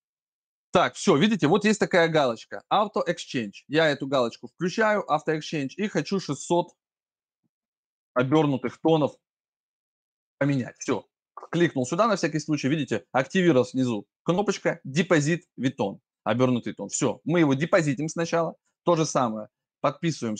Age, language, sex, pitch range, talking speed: 20-39, Russian, male, 125-170 Hz, 130 wpm